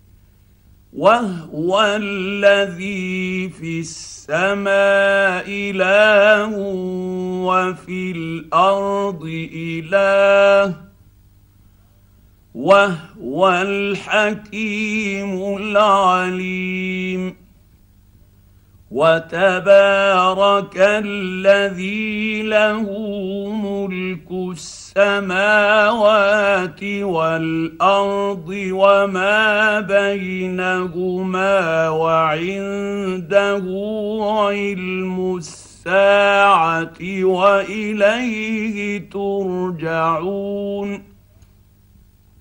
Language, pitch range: Arabic, 165-200 Hz